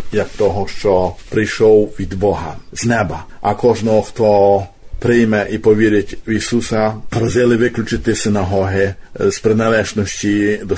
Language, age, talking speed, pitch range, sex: Ukrainian, 50-69, 120 wpm, 100-110 Hz, male